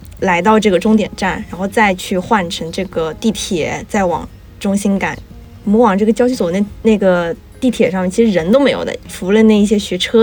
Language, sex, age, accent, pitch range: Chinese, female, 20-39, native, 185-225 Hz